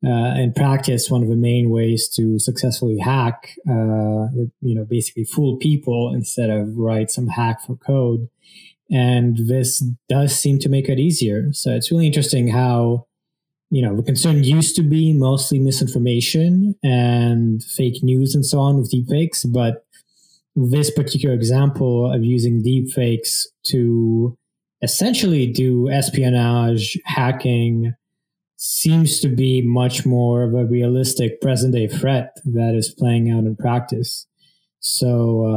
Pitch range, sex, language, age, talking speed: 120-150 Hz, male, English, 20-39, 140 wpm